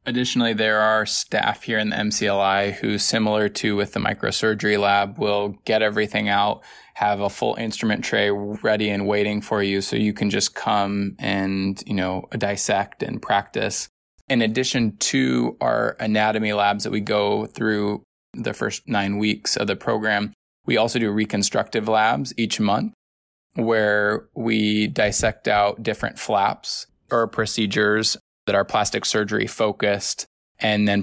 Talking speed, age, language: 155 wpm, 20-39, English